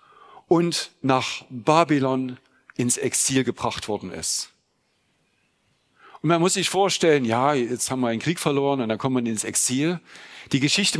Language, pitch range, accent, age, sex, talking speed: German, 115-160 Hz, German, 50-69, male, 155 wpm